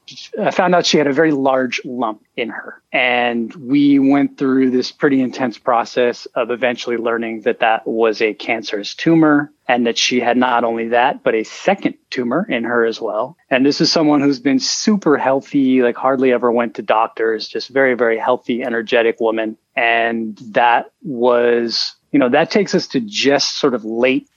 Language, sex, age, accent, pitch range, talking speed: English, male, 20-39, American, 115-140 Hz, 185 wpm